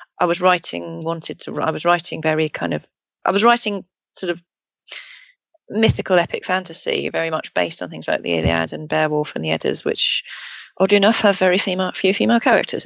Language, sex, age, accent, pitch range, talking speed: English, female, 30-49, British, 145-185 Hz, 190 wpm